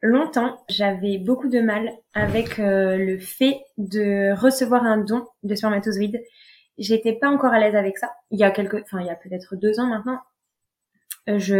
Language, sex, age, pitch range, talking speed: French, female, 20-39, 205-245 Hz, 180 wpm